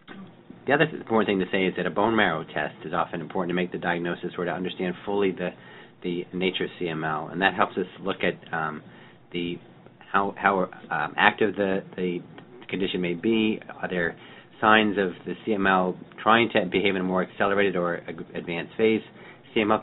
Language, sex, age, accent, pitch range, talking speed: English, male, 40-59, American, 85-100 Hz, 195 wpm